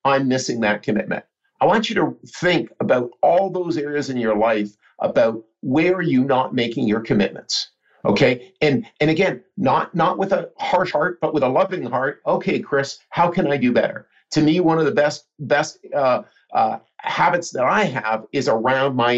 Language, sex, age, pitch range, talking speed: English, male, 50-69, 120-155 Hz, 195 wpm